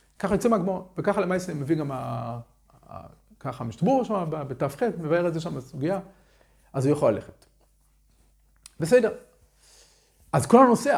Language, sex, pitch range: Hebrew, male, 135-200 Hz